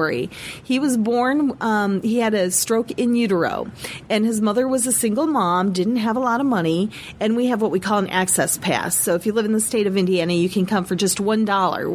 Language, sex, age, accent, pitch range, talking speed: English, female, 40-59, American, 180-220 Hz, 235 wpm